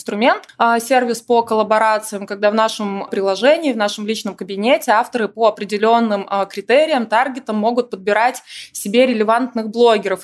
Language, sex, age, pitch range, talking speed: Russian, female, 20-39, 200-235 Hz, 140 wpm